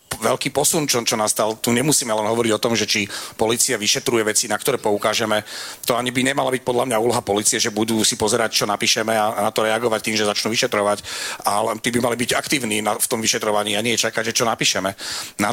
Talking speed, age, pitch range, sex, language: 220 wpm, 40-59, 115-135 Hz, male, Slovak